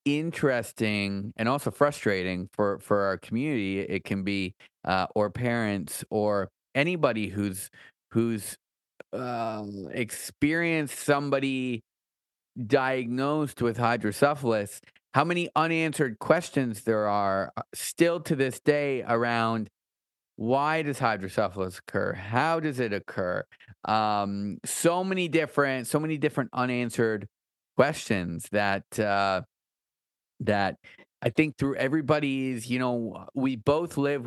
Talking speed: 110 wpm